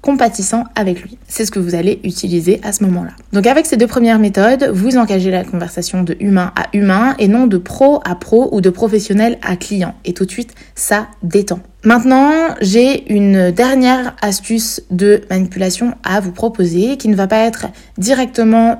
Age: 20-39